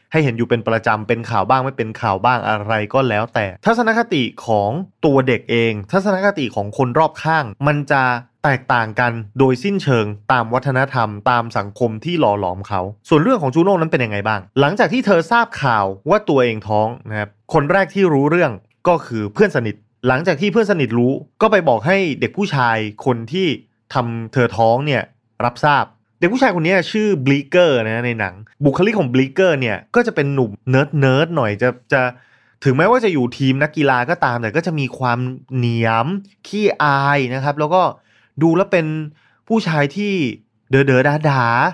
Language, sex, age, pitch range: Thai, male, 20-39, 115-165 Hz